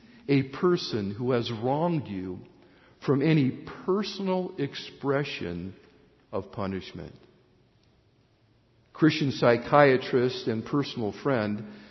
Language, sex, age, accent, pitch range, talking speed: English, male, 50-69, American, 120-160 Hz, 85 wpm